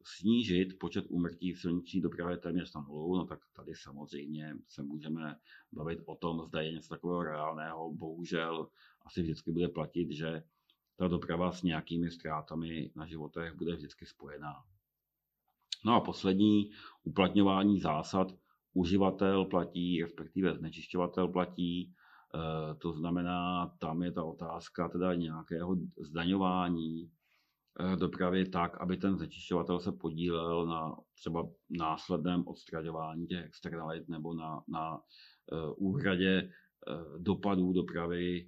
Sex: male